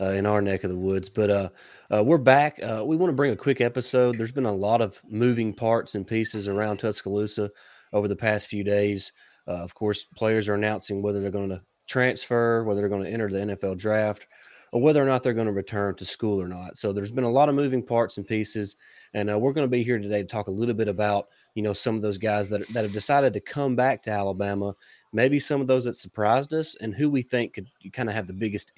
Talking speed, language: 255 wpm, English